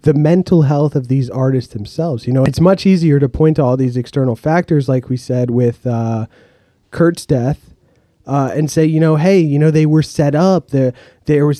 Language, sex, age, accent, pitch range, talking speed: English, male, 30-49, American, 130-160 Hz, 210 wpm